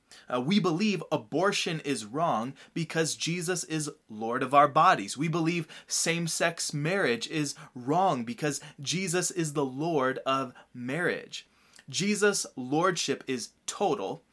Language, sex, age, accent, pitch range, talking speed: English, male, 20-39, American, 135-175 Hz, 125 wpm